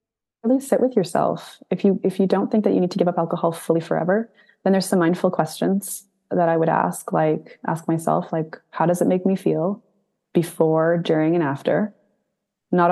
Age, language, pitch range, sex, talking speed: 20-39, English, 155-180 Hz, female, 195 wpm